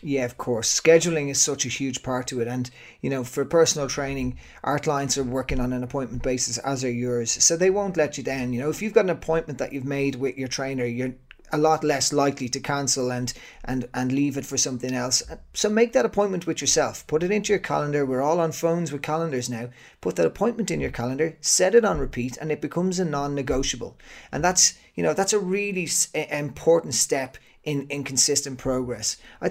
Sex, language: male, English